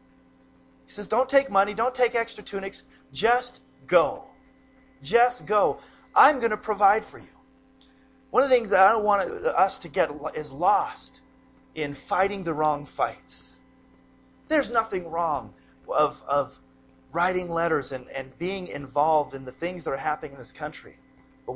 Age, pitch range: 40-59, 145-205 Hz